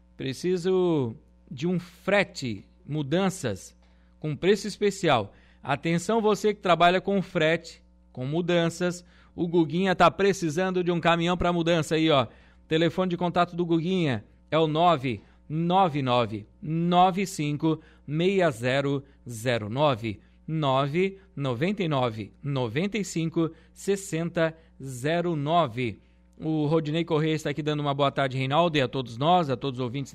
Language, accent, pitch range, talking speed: Portuguese, Brazilian, 125-170 Hz, 105 wpm